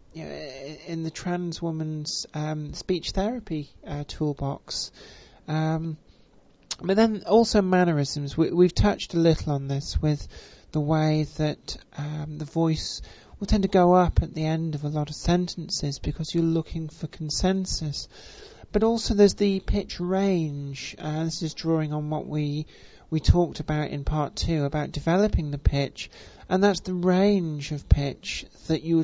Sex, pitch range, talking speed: male, 150-175 Hz, 165 wpm